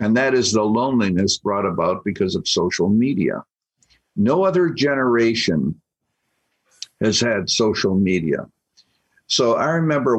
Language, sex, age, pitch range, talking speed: English, male, 60-79, 95-120 Hz, 125 wpm